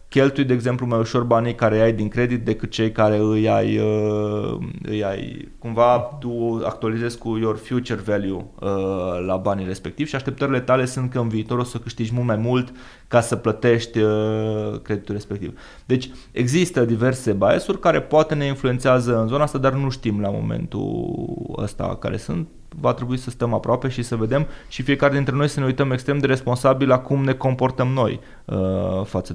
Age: 20-39